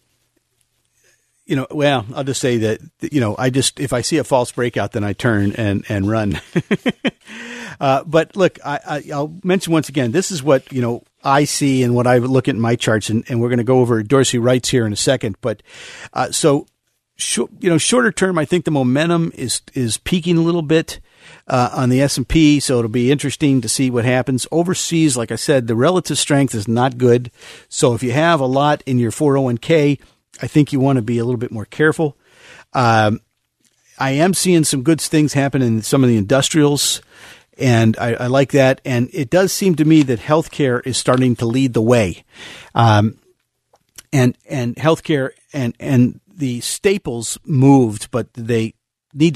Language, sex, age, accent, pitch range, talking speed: English, male, 50-69, American, 120-150 Hz, 200 wpm